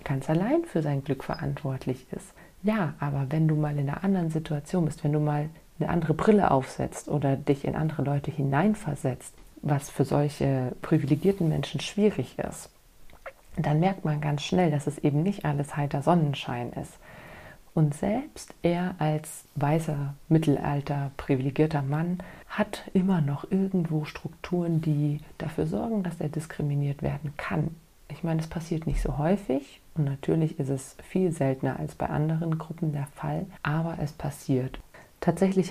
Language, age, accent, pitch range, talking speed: German, 30-49, German, 145-165 Hz, 160 wpm